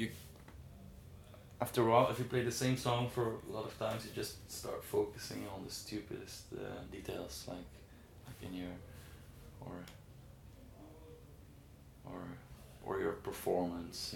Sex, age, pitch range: male, 20-39, 80-105 Hz